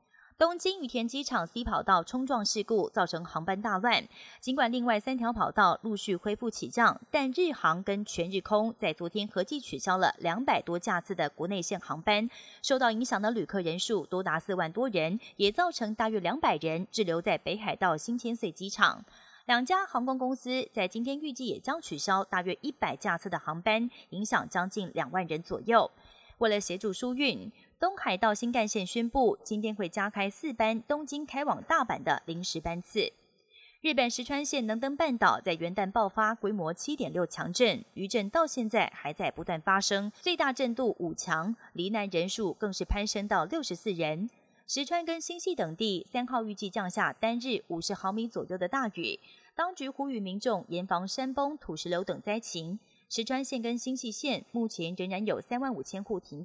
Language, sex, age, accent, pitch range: Chinese, female, 30-49, native, 185-250 Hz